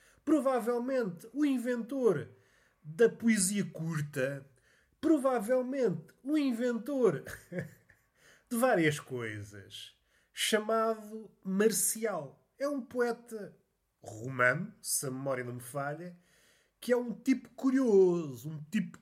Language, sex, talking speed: Portuguese, male, 100 wpm